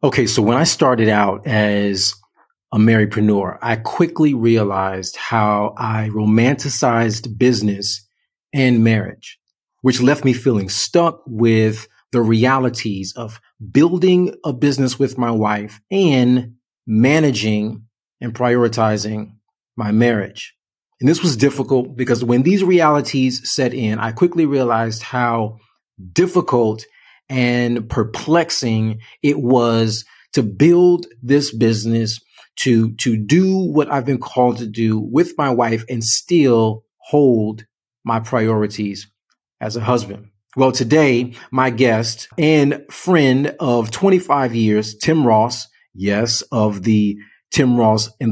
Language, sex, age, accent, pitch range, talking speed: English, male, 30-49, American, 110-135 Hz, 125 wpm